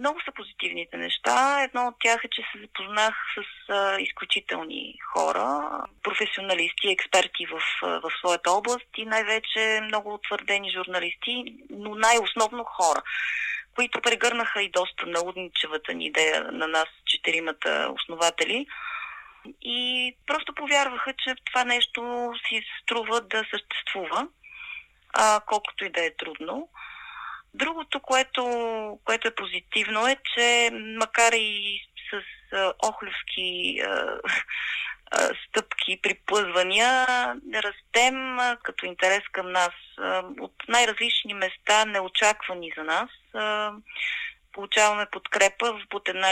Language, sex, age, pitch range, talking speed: Bulgarian, female, 30-49, 185-245 Hz, 110 wpm